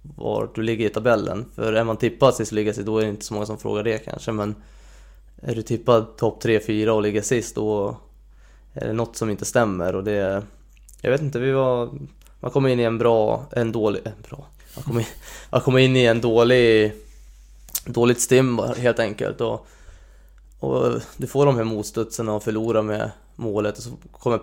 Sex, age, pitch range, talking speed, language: male, 20-39, 105-120 Hz, 200 wpm, Swedish